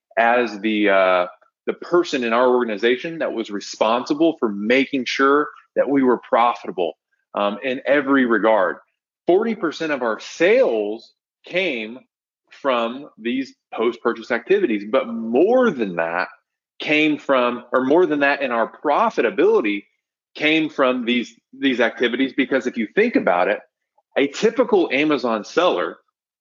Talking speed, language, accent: 135 wpm, English, American